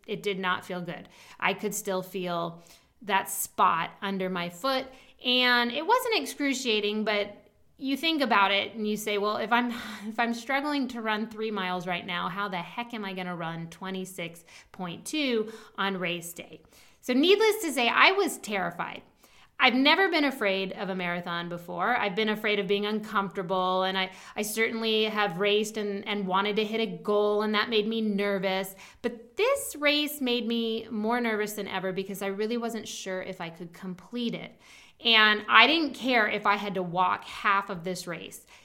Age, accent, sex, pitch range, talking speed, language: 20-39, American, female, 190-235 Hz, 190 wpm, English